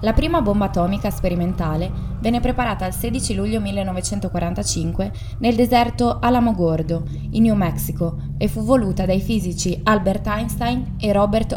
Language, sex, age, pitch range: Italian, female, 20-39, 150-210 Hz